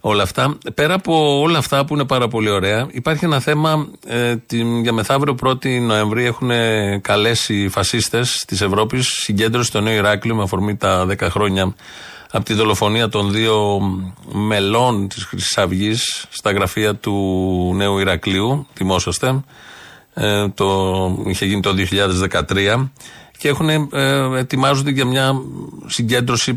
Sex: male